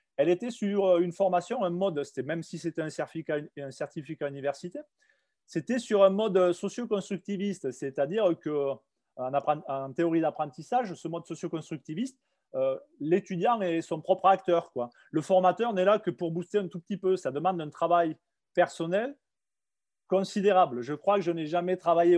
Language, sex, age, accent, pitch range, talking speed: French, male, 30-49, French, 155-195 Hz, 170 wpm